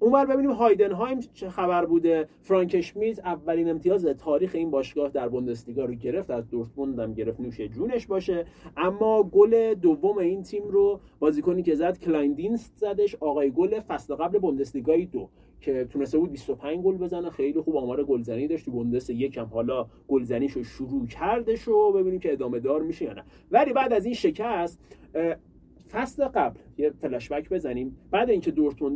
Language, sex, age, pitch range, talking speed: Persian, male, 30-49, 135-205 Hz, 160 wpm